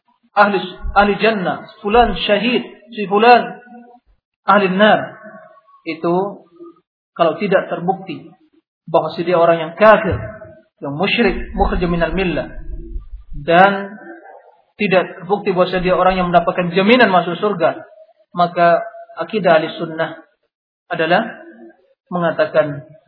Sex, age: male, 40-59